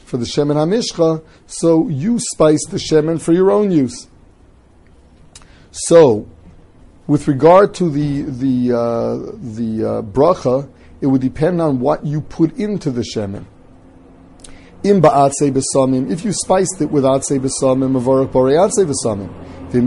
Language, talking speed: English, 140 wpm